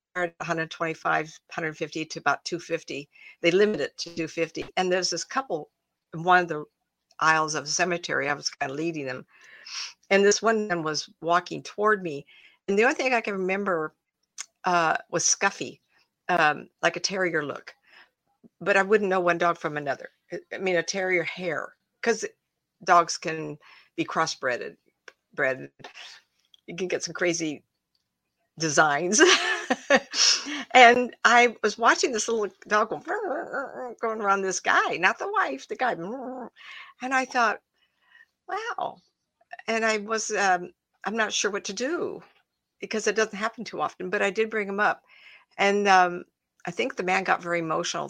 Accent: American